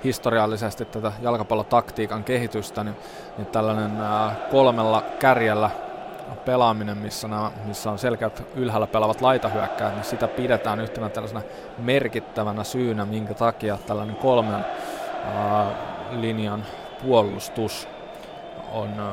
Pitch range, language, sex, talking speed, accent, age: 105-115 Hz, Finnish, male, 105 wpm, native, 20-39